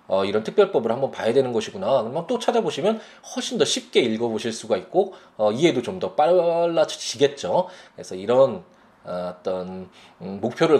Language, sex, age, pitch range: Korean, male, 20-39, 105-160 Hz